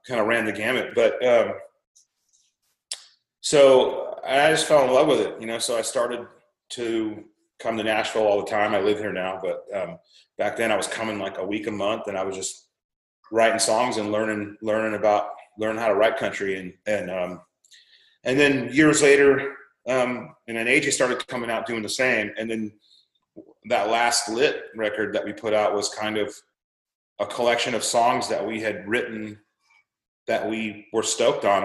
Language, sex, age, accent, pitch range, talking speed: English, male, 30-49, American, 105-130 Hz, 190 wpm